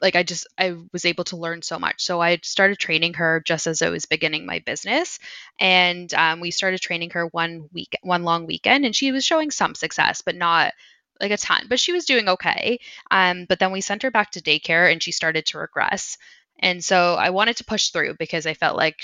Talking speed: 235 wpm